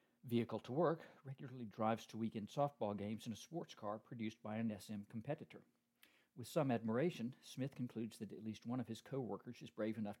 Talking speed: 180 wpm